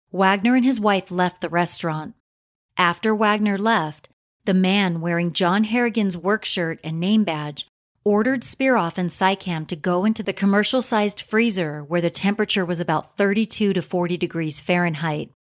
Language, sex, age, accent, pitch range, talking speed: English, female, 30-49, American, 165-215 Hz, 155 wpm